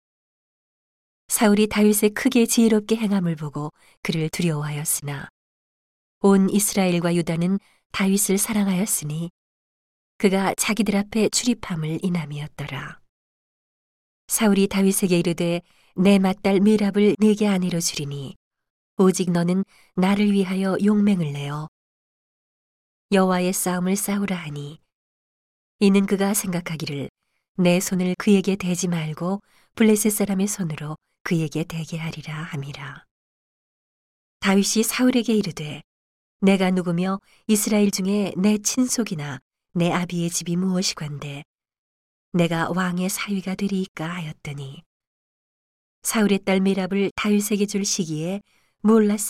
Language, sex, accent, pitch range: Korean, female, native, 160-200 Hz